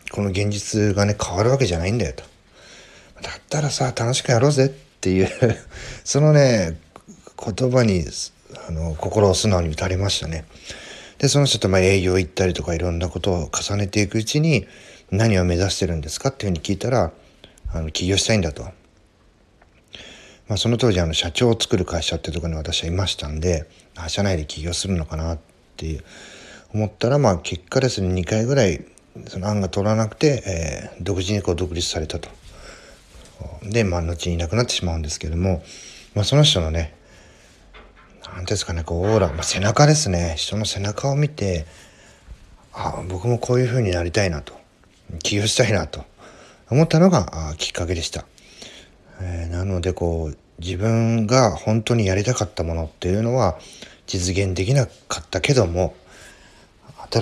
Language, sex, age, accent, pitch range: Japanese, male, 40-59, native, 85-110 Hz